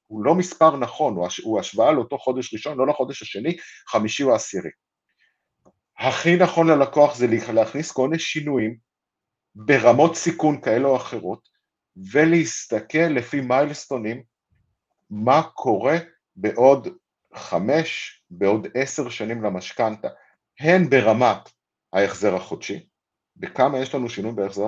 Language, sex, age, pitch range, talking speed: Hebrew, male, 50-69, 110-150 Hz, 115 wpm